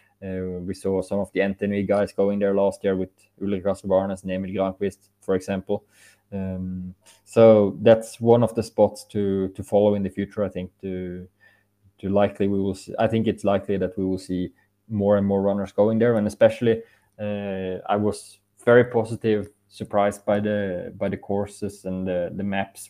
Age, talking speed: 20-39, 190 wpm